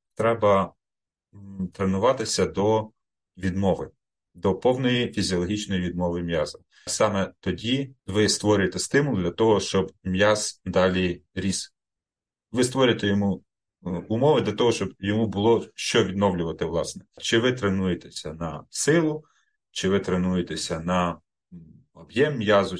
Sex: male